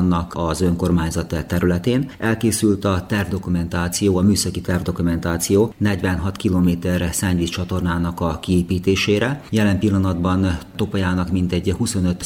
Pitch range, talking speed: 85-100 Hz, 100 wpm